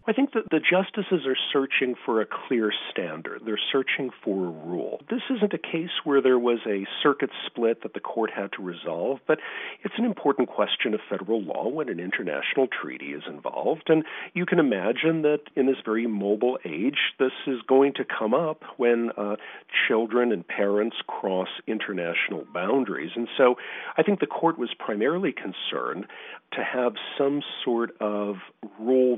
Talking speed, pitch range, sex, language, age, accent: 175 wpm, 105-165 Hz, male, English, 50-69, American